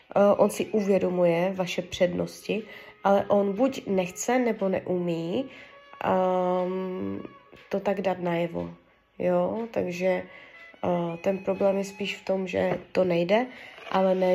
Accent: native